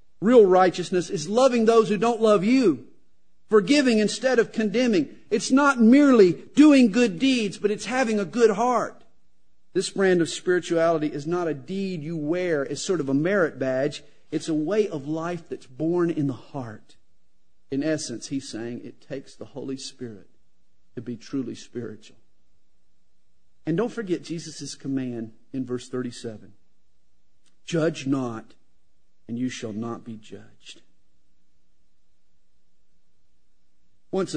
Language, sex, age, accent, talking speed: English, male, 50-69, American, 140 wpm